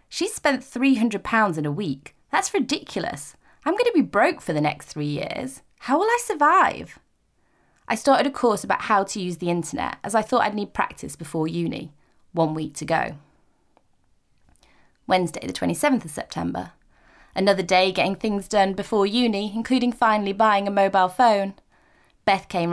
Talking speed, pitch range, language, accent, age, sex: 170 wpm, 170-235 Hz, English, British, 20-39, female